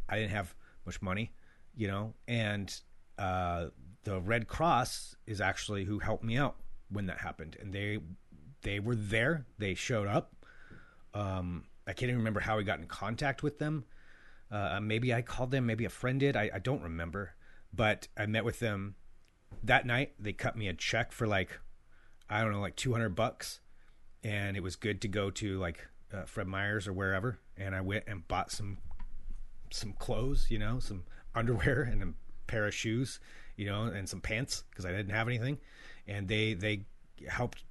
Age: 30-49